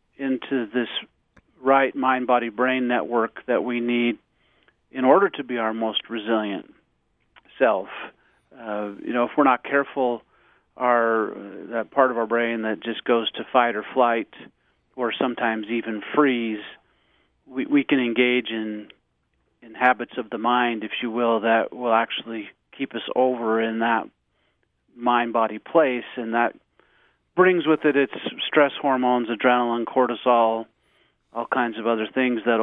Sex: male